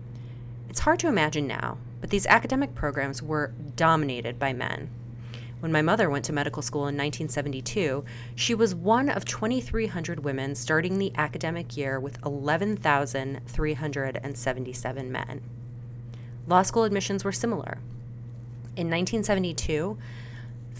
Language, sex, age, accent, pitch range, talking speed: English, female, 30-49, American, 120-170 Hz, 120 wpm